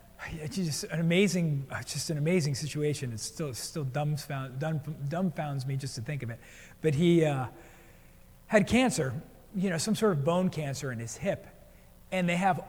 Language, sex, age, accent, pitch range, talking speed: English, male, 40-59, American, 150-185 Hz, 180 wpm